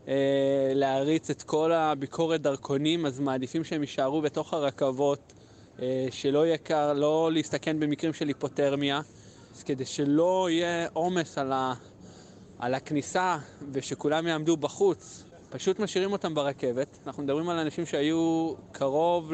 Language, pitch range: Hebrew, 130-155 Hz